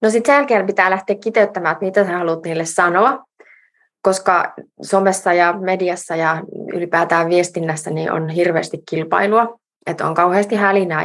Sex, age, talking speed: female, 20-39, 150 wpm